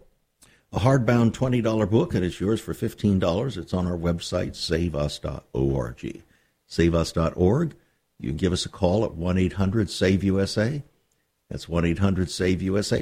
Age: 60-79